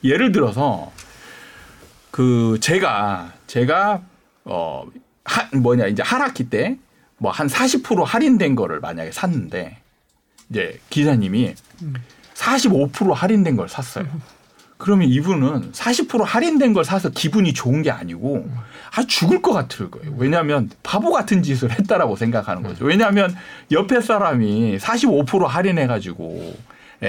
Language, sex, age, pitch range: Korean, male, 40-59, 125-200 Hz